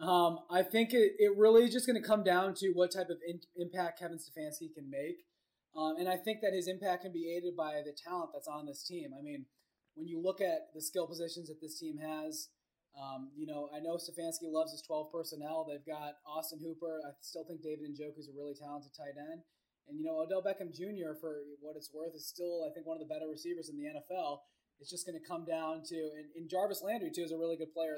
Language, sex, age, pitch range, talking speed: English, male, 20-39, 145-180 Hz, 240 wpm